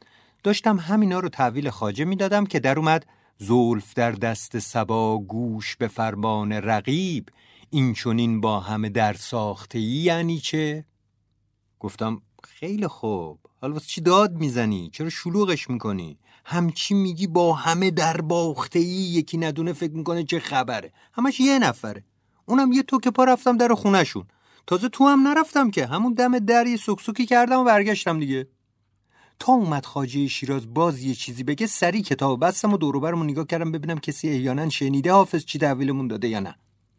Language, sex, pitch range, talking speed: Persian, male, 105-170 Hz, 165 wpm